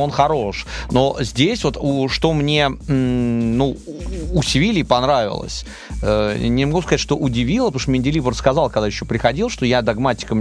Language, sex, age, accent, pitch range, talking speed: Russian, male, 30-49, native, 115-150 Hz, 145 wpm